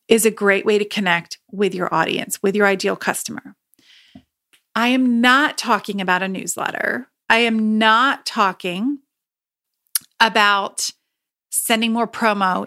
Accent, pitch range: American, 200-240 Hz